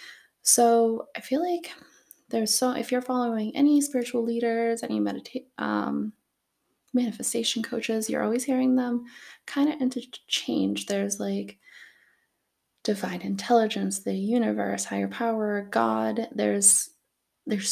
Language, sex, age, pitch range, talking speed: English, female, 20-39, 185-235 Hz, 115 wpm